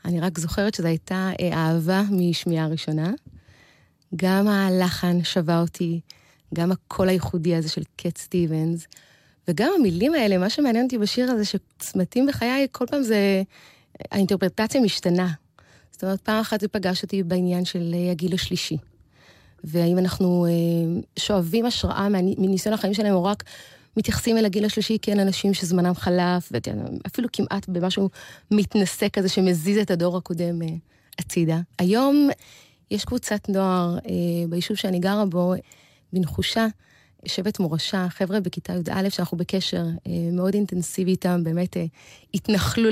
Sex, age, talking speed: female, 20-39, 130 wpm